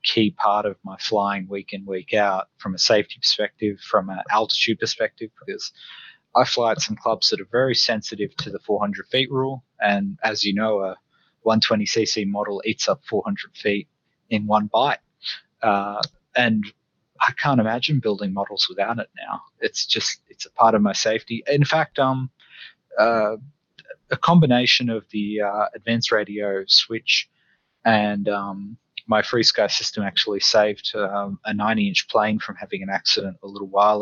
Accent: Australian